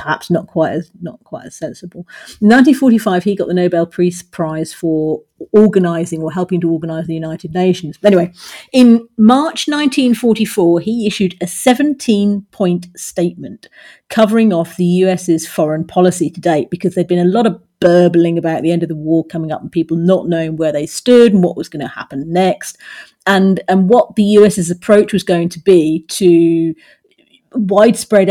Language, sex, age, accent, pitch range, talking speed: English, female, 40-59, British, 170-215 Hz, 180 wpm